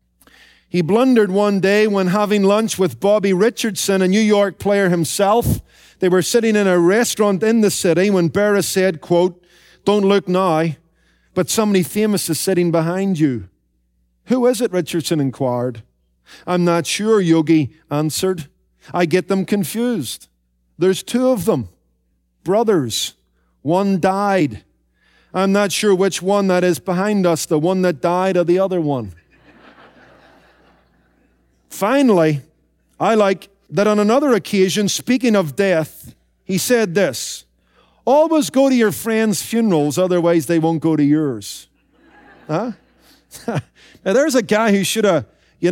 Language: English